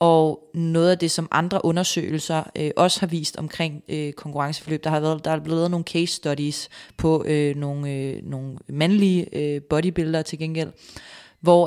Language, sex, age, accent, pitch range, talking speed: Danish, female, 30-49, native, 150-170 Hz, 160 wpm